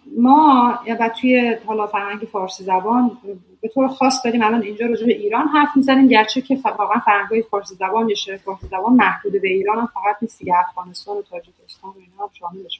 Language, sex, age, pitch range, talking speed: Persian, female, 30-49, 195-240 Hz, 185 wpm